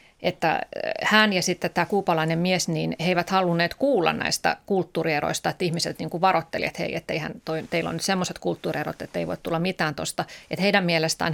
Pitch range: 160-185 Hz